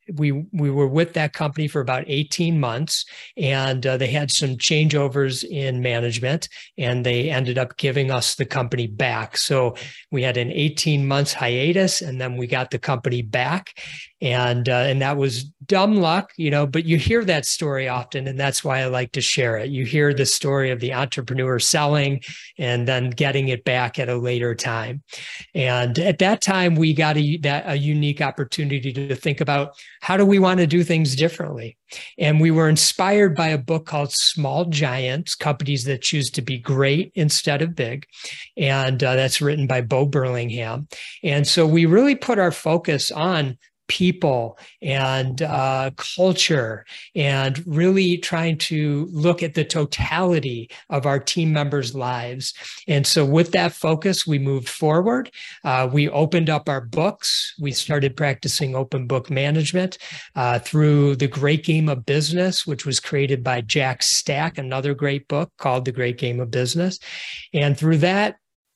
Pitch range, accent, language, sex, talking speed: 130-160 Hz, American, English, male, 175 wpm